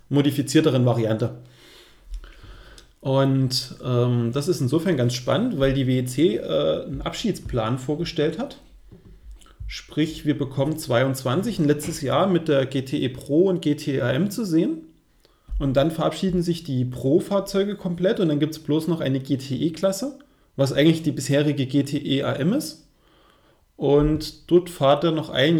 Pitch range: 135-170 Hz